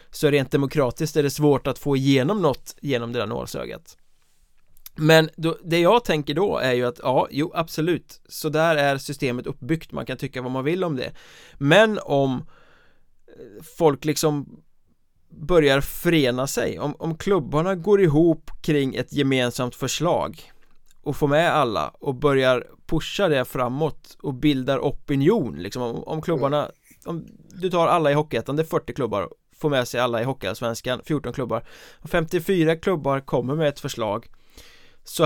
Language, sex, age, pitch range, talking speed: Swedish, male, 20-39, 130-160 Hz, 165 wpm